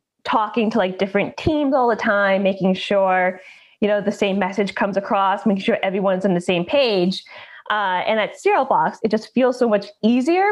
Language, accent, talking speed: English, American, 195 wpm